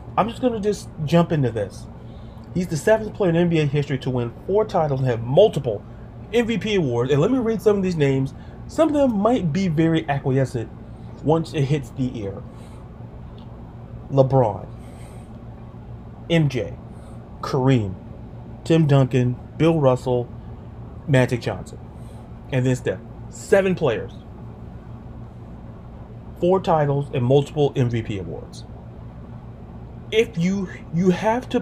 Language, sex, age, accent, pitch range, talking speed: English, male, 30-49, American, 120-180 Hz, 130 wpm